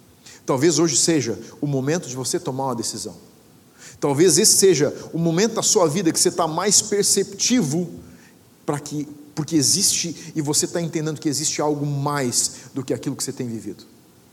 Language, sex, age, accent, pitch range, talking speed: Portuguese, male, 50-69, Brazilian, 130-165 Hz, 170 wpm